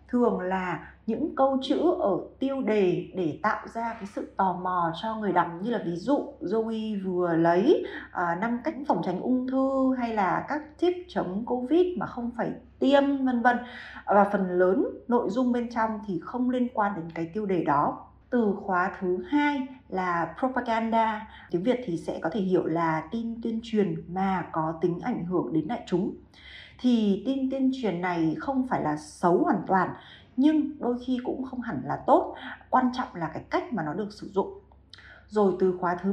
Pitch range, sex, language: 185-255 Hz, female, Vietnamese